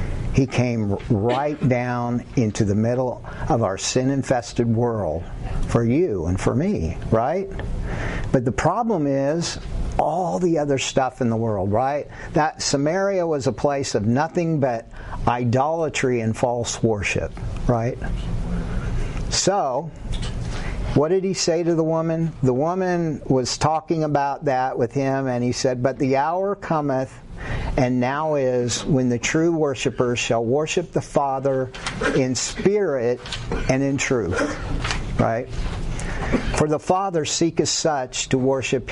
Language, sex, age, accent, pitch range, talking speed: English, male, 50-69, American, 120-145 Hz, 135 wpm